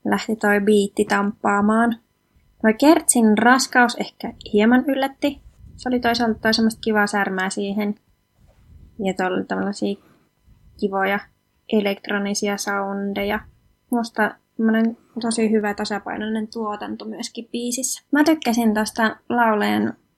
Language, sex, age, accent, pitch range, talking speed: English, female, 20-39, Finnish, 200-240 Hz, 100 wpm